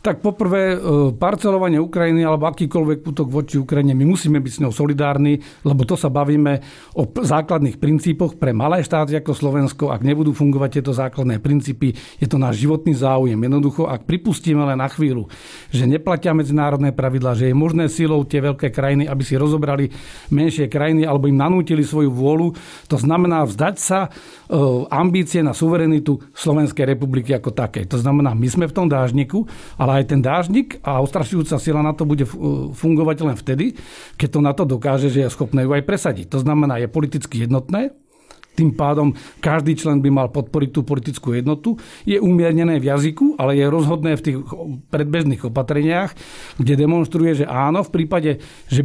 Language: Slovak